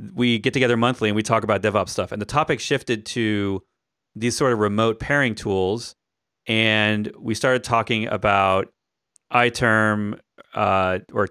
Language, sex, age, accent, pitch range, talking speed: English, male, 30-49, American, 105-125 Hz, 150 wpm